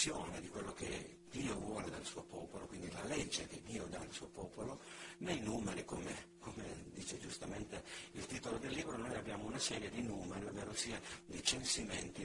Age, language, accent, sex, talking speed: 60-79, Italian, native, male, 180 wpm